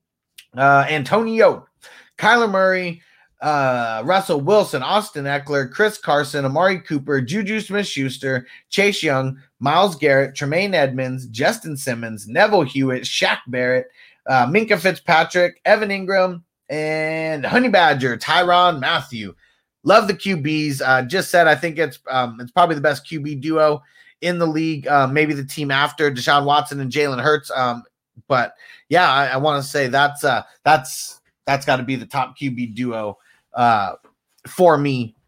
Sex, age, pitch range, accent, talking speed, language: male, 30-49, 130-170 Hz, American, 150 wpm, English